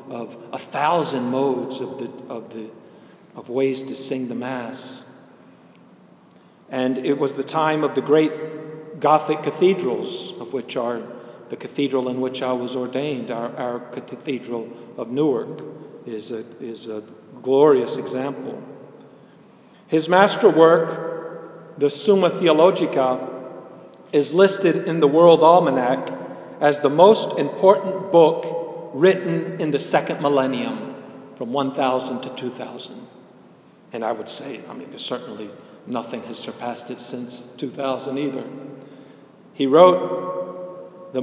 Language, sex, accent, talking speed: English, male, American, 125 wpm